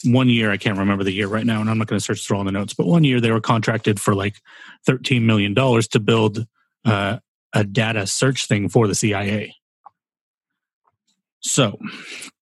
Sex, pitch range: male, 105-135 Hz